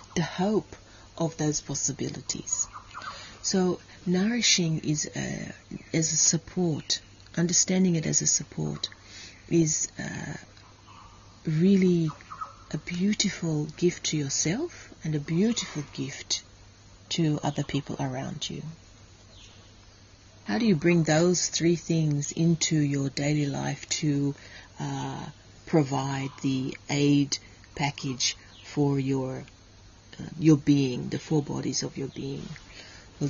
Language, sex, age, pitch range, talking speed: English, female, 40-59, 105-165 Hz, 110 wpm